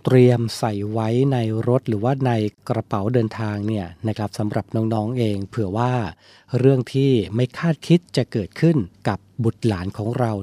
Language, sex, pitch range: Thai, male, 110-130 Hz